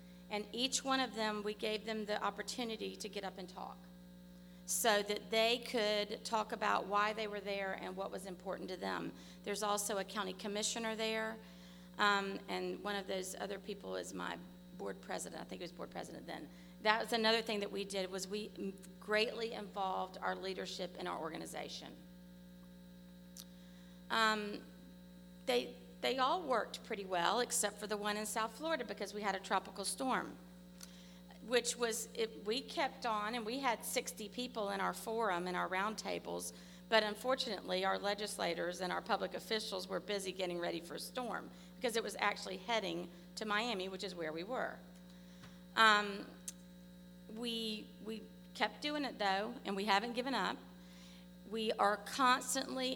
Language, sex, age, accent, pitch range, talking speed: English, female, 40-59, American, 175-220 Hz, 170 wpm